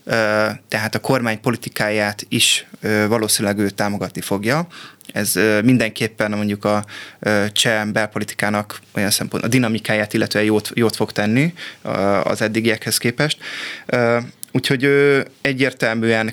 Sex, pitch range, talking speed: male, 105-125 Hz, 110 wpm